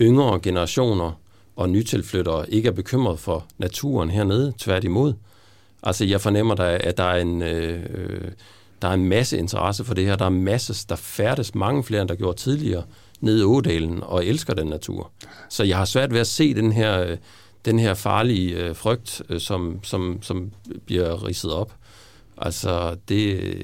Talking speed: 170 wpm